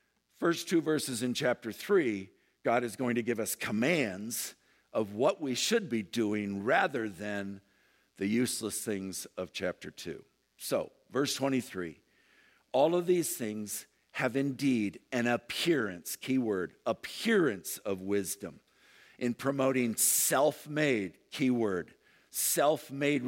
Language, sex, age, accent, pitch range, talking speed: English, male, 50-69, American, 105-135 Hz, 120 wpm